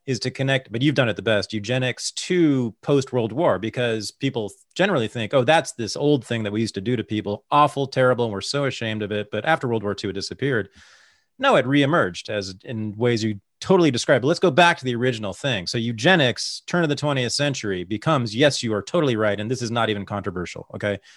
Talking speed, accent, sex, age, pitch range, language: 230 wpm, American, male, 30-49, 110-145 Hz, English